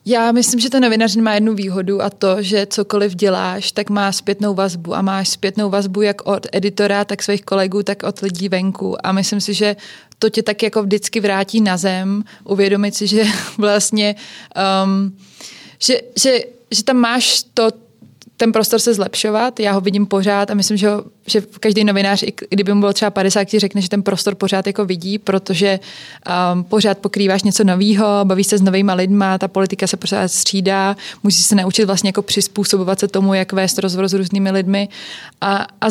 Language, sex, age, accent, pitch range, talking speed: Czech, female, 20-39, native, 195-215 Hz, 190 wpm